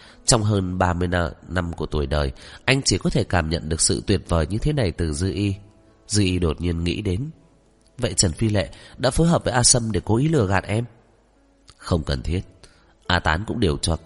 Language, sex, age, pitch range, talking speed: Vietnamese, male, 30-49, 85-115 Hz, 225 wpm